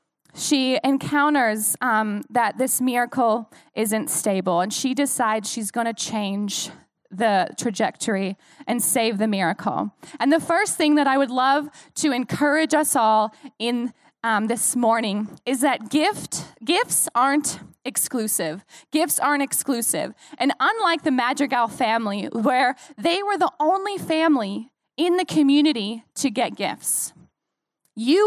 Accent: American